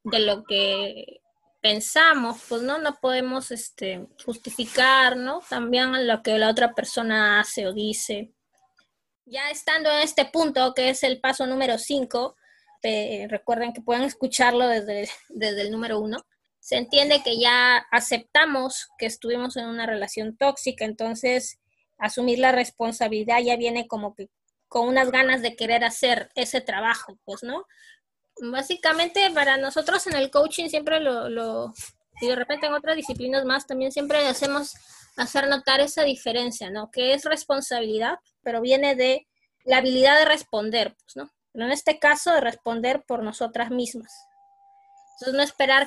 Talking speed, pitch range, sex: 155 wpm, 230-275 Hz, female